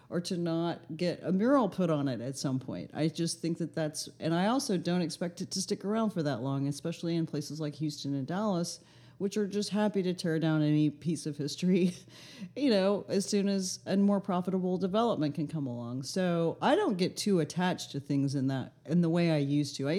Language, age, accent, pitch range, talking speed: English, 40-59, American, 155-215 Hz, 230 wpm